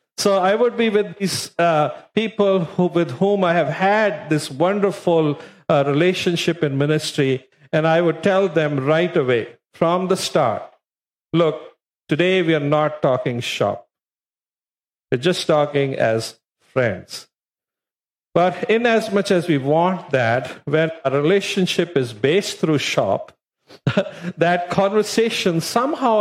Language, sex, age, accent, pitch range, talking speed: English, male, 50-69, Indian, 145-195 Hz, 135 wpm